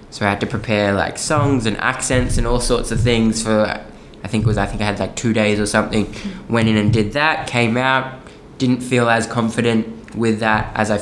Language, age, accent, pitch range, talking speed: English, 10-29, Australian, 105-120 Hz, 235 wpm